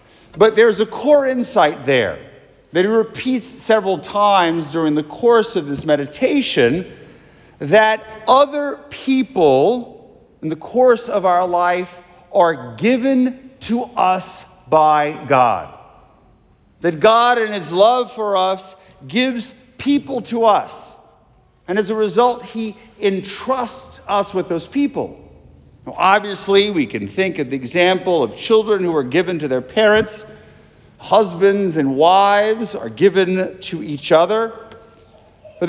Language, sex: English, male